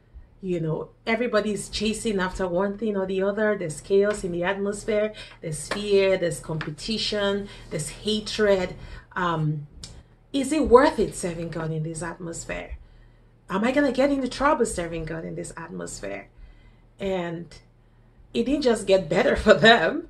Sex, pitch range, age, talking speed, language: female, 165-215 Hz, 30-49, 150 wpm, English